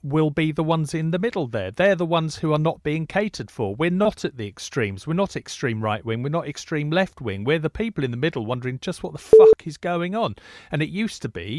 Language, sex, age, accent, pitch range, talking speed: English, male, 40-59, British, 130-170 Hz, 265 wpm